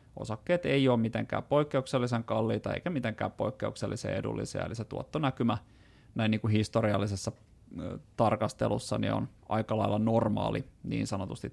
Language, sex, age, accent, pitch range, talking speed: Finnish, male, 30-49, native, 105-125 Hz, 125 wpm